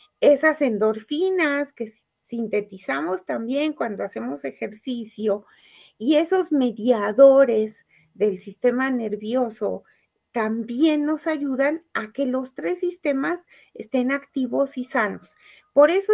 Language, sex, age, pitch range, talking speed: Spanish, female, 40-59, 235-305 Hz, 105 wpm